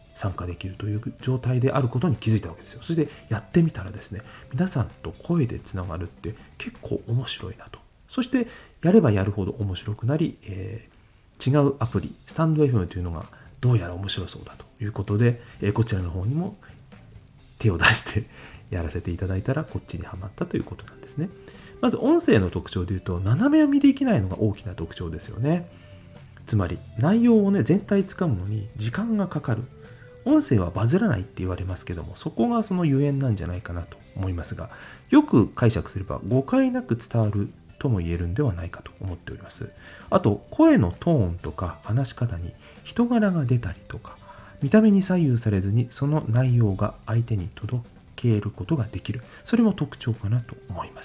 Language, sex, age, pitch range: Japanese, male, 40-59, 95-150 Hz